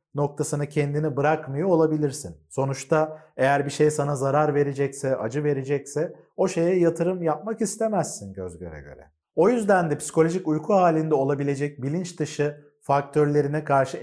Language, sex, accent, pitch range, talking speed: Turkish, male, native, 135-170 Hz, 135 wpm